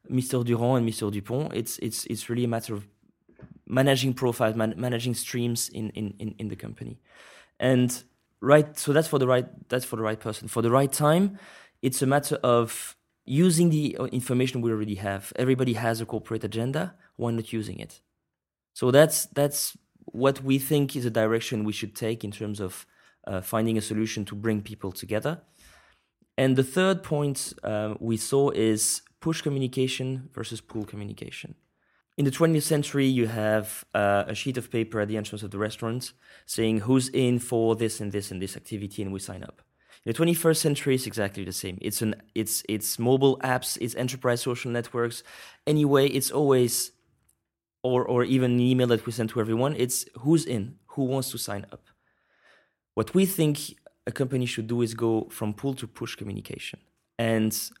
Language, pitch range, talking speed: French, 110-135 Hz, 185 wpm